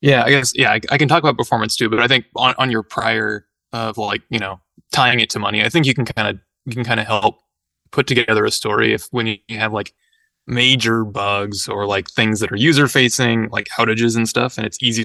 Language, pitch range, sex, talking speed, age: English, 105-125 Hz, male, 245 wpm, 20-39